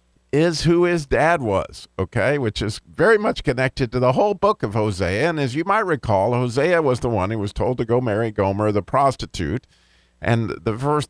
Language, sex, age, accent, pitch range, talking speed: English, male, 50-69, American, 100-140 Hz, 205 wpm